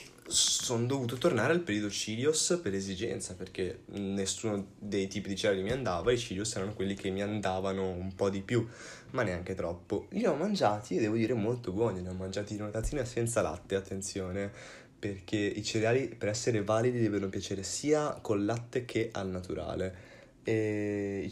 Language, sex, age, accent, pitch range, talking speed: Italian, male, 20-39, native, 95-115 Hz, 175 wpm